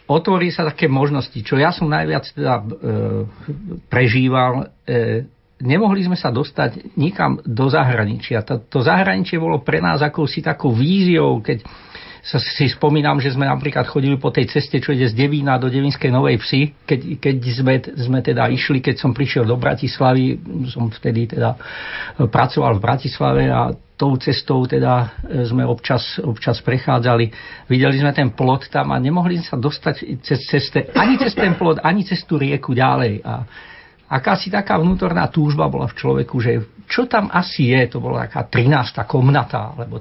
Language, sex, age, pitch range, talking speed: Slovak, male, 50-69, 125-155 Hz, 165 wpm